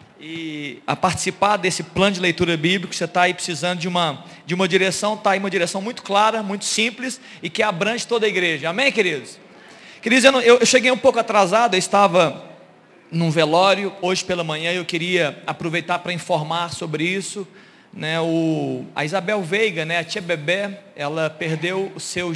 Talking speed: 185 wpm